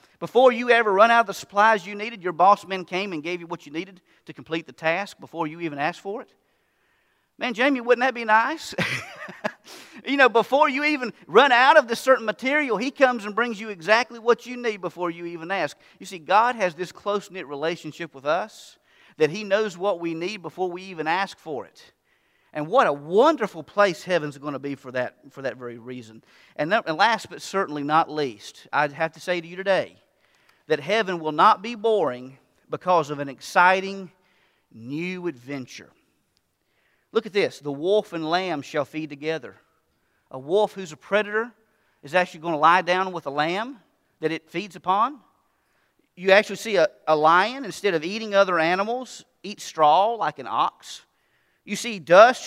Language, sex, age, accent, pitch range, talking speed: English, male, 40-59, American, 160-220 Hz, 195 wpm